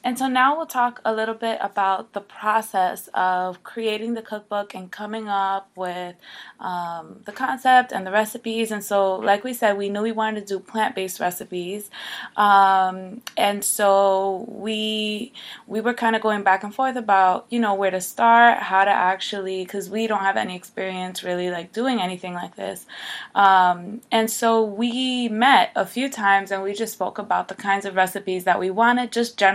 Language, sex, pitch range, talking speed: English, female, 185-220 Hz, 185 wpm